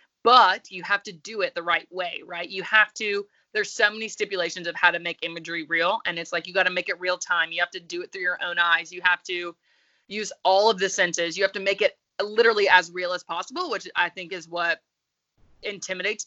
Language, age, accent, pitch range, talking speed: English, 20-39, American, 170-185 Hz, 245 wpm